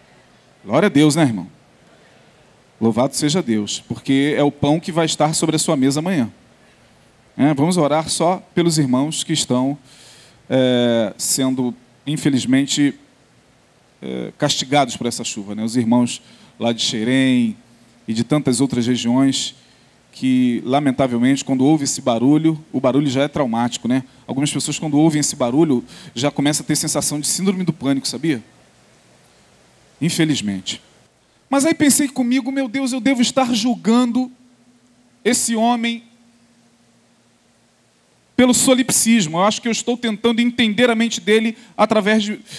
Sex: male